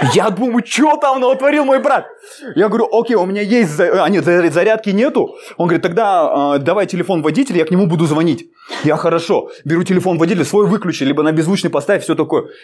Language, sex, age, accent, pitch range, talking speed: Russian, male, 20-39, native, 175-275 Hz, 205 wpm